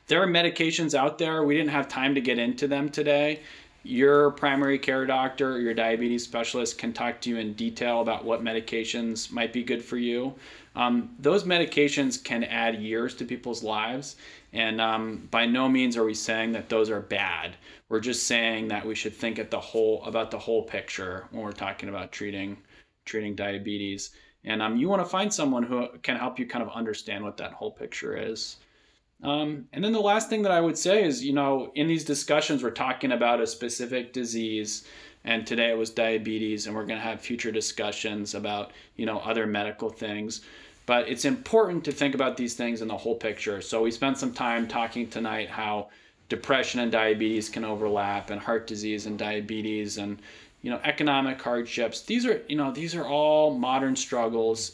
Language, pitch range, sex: English, 110-135 Hz, male